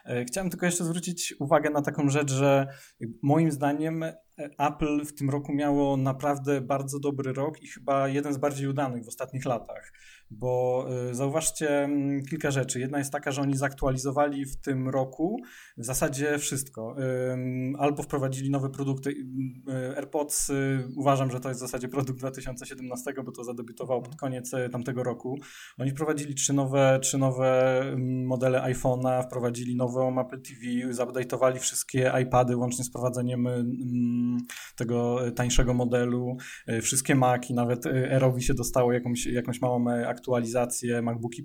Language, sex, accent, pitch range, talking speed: Polish, male, native, 125-140 Hz, 140 wpm